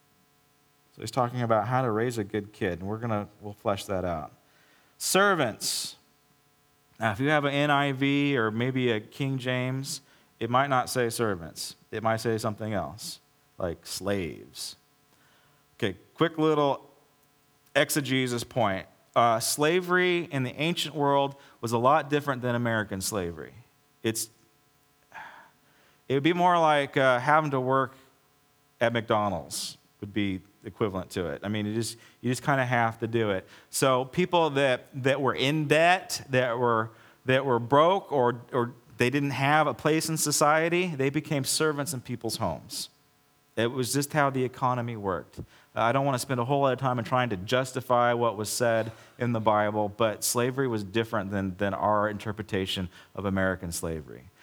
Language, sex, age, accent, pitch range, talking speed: English, male, 30-49, American, 105-140 Hz, 170 wpm